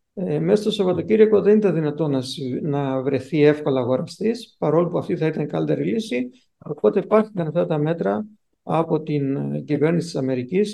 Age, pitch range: 50-69, 145-185 Hz